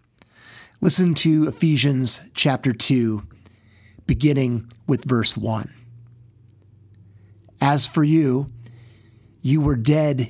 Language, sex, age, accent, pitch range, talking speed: English, male, 30-49, American, 120-145 Hz, 85 wpm